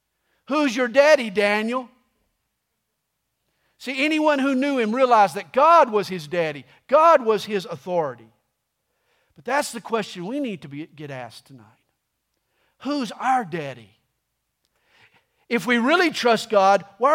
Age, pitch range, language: 50-69, 205-280 Hz, English